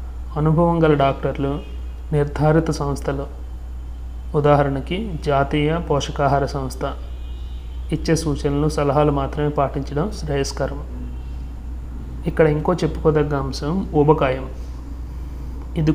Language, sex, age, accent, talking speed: Telugu, male, 30-49, native, 80 wpm